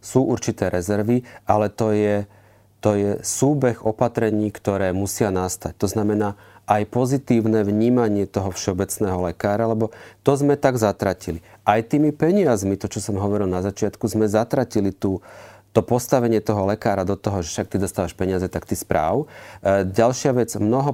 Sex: male